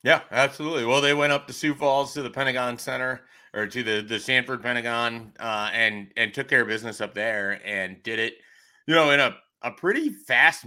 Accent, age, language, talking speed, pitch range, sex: American, 30-49, English, 215 wpm, 115-140 Hz, male